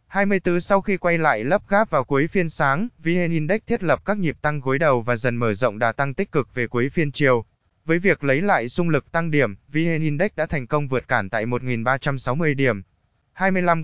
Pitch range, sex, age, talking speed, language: 125-165 Hz, male, 20-39, 220 wpm, Vietnamese